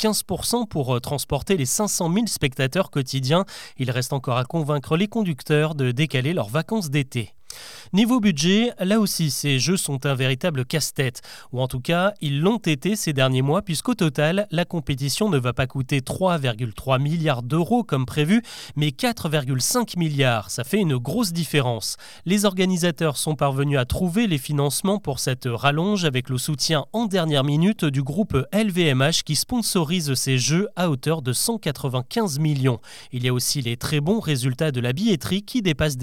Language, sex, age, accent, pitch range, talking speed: French, male, 30-49, French, 135-195 Hz, 170 wpm